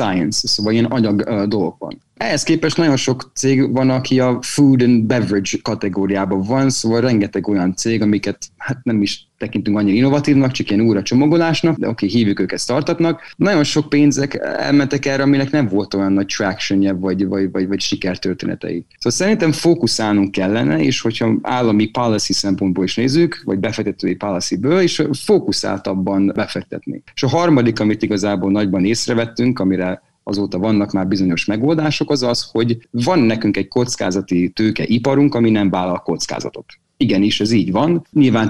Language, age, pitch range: Hungarian, 30-49, 100-135 Hz